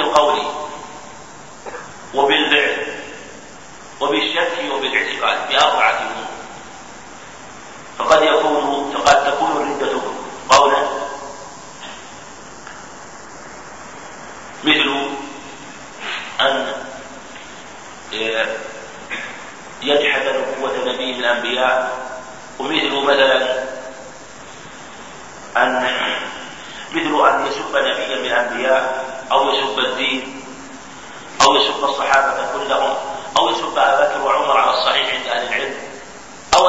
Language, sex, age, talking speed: Arabic, male, 50-69, 70 wpm